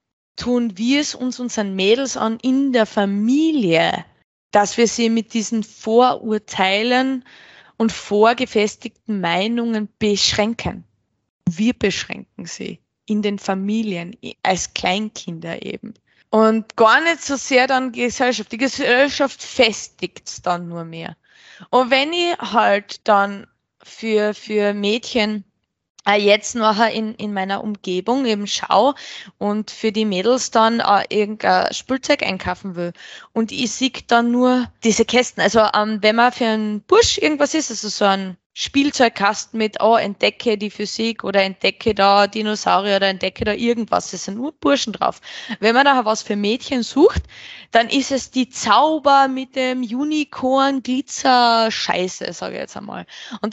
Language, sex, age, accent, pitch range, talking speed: German, female, 20-39, Austrian, 205-250 Hz, 145 wpm